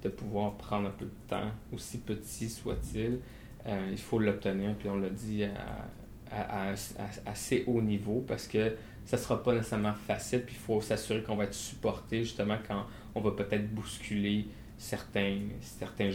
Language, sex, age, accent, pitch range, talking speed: English, male, 20-39, Canadian, 105-120 Hz, 185 wpm